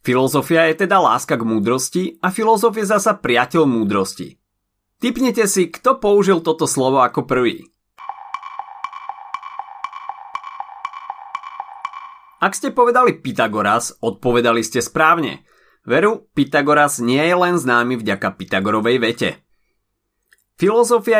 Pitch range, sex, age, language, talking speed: 125-210 Hz, male, 30-49, Slovak, 105 wpm